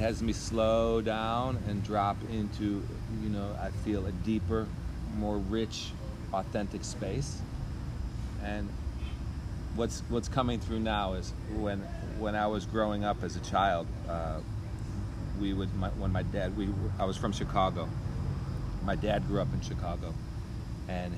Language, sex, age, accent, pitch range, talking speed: English, male, 40-59, American, 95-110 Hz, 145 wpm